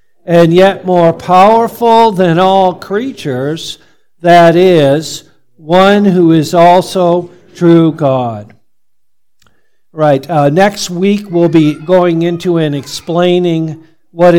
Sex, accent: male, American